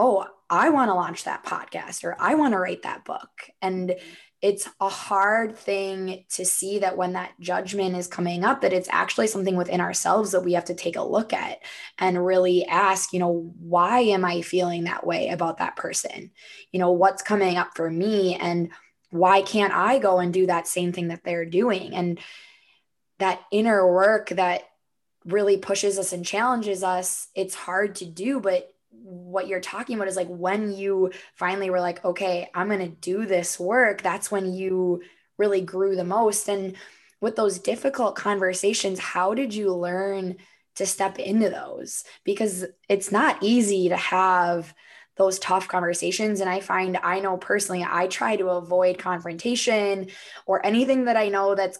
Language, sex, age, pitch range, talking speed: English, female, 20-39, 180-200 Hz, 180 wpm